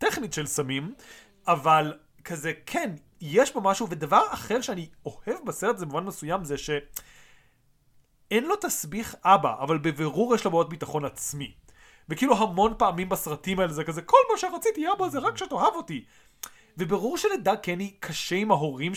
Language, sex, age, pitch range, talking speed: Hebrew, male, 30-49, 155-230 Hz, 165 wpm